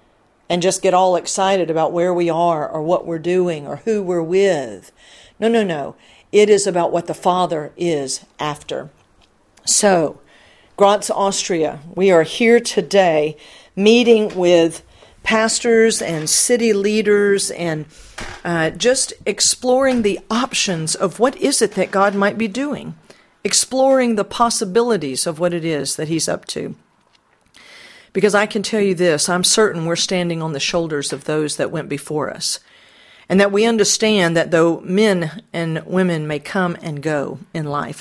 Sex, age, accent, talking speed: female, 50-69, American, 160 wpm